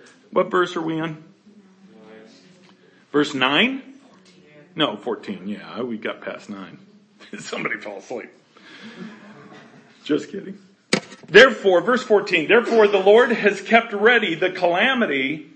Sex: male